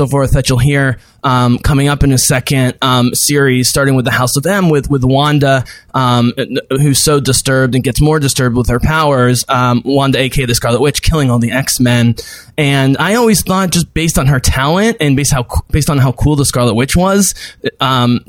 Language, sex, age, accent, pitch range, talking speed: English, male, 20-39, American, 125-145 Hz, 210 wpm